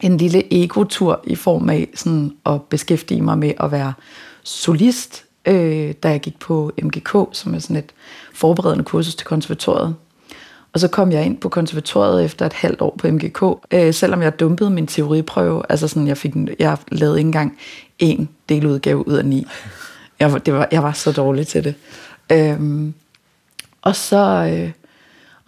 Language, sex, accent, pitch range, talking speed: Danish, female, native, 155-185 Hz, 175 wpm